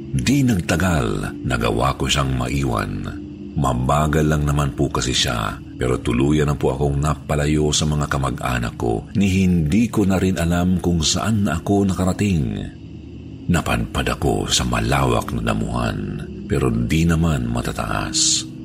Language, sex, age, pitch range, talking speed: Filipino, male, 50-69, 75-95 Hz, 140 wpm